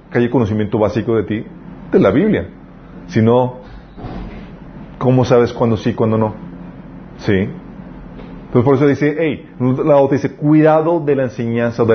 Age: 40-59